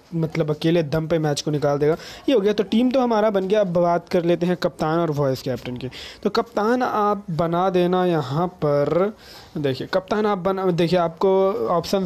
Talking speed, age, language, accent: 205 wpm, 20-39, Hindi, native